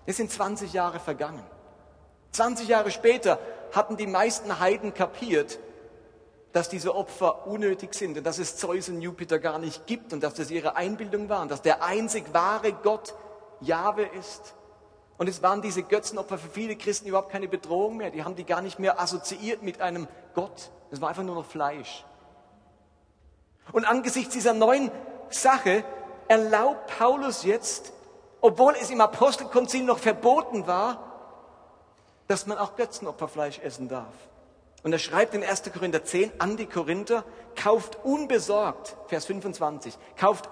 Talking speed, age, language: 155 wpm, 40-59, German